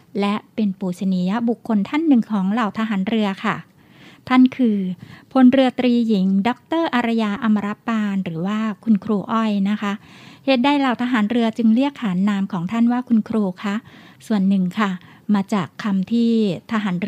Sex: female